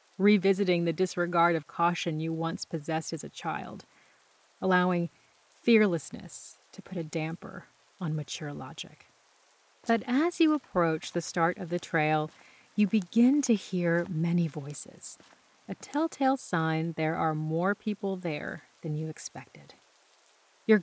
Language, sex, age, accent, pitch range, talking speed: English, female, 40-59, American, 165-215 Hz, 135 wpm